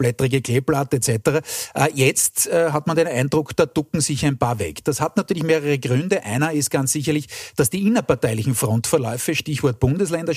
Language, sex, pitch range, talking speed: German, male, 135-160 Hz, 170 wpm